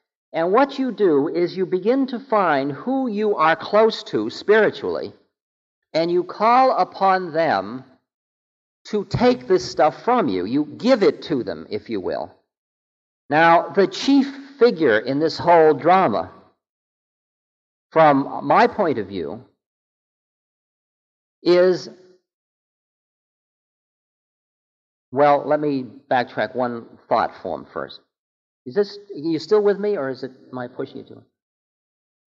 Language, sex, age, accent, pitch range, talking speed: English, male, 50-69, American, 125-205 Hz, 135 wpm